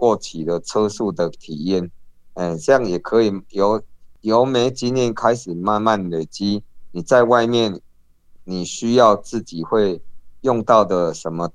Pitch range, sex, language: 85-115 Hz, male, Chinese